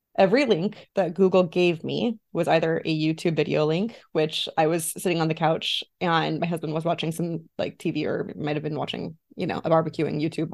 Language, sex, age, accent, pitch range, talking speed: English, female, 20-39, American, 160-215 Hz, 210 wpm